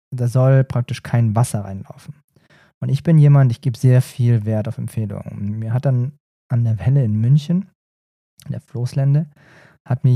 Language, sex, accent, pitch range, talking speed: German, male, German, 120-145 Hz, 175 wpm